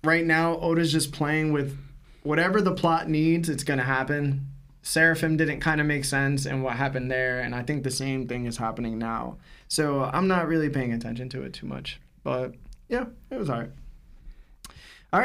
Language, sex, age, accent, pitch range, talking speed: English, male, 20-39, American, 135-185 Hz, 195 wpm